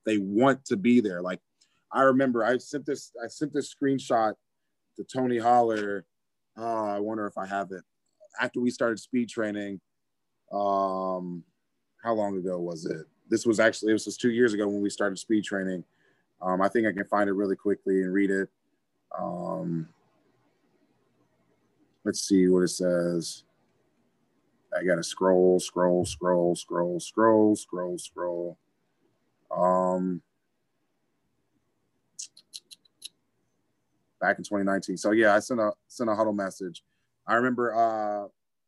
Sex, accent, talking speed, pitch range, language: male, American, 145 wpm, 95-115 Hz, English